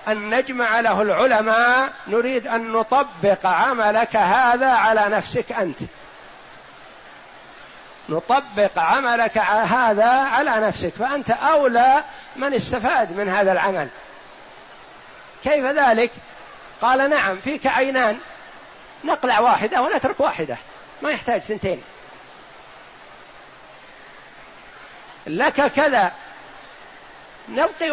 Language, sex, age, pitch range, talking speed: Arabic, male, 50-69, 215-275 Hz, 90 wpm